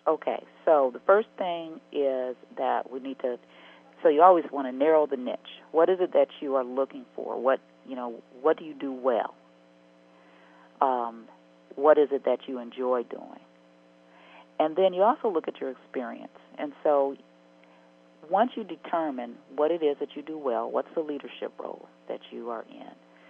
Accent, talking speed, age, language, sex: American, 180 wpm, 40-59, English, female